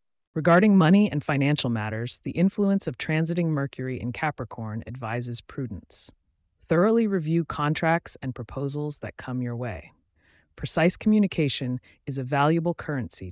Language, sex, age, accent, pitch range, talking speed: English, female, 30-49, American, 120-165 Hz, 130 wpm